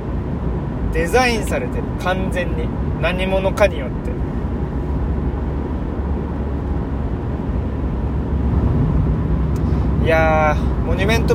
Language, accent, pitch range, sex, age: Japanese, native, 70-80 Hz, male, 20-39